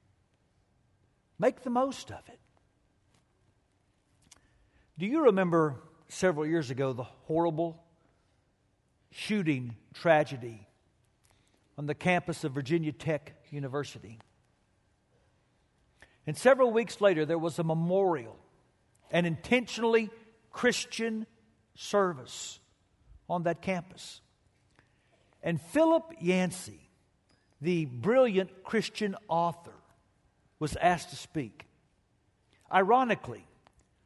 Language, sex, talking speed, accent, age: English, male, 85 wpm, American, 60-79